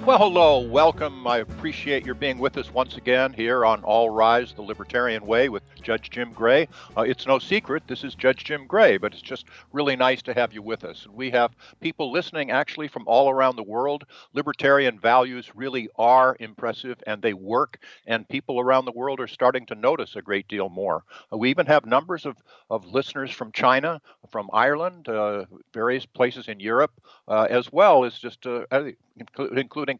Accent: American